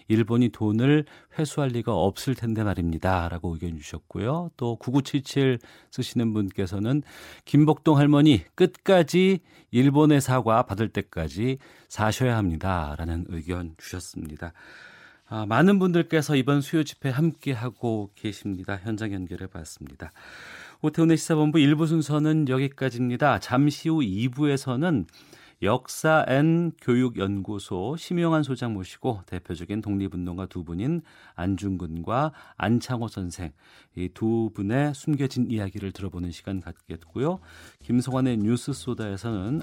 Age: 40-59